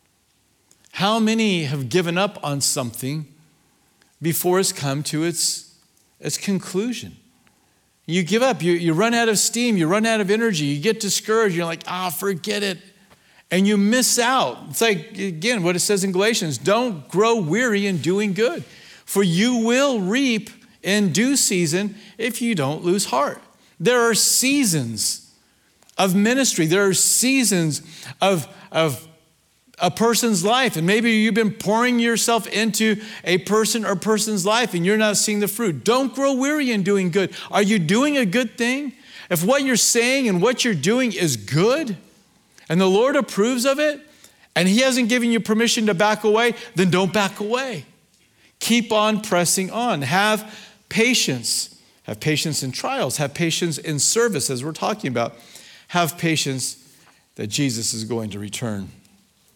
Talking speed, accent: 165 wpm, American